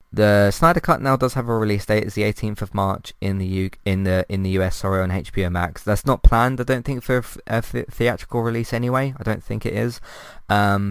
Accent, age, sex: British, 20-39, male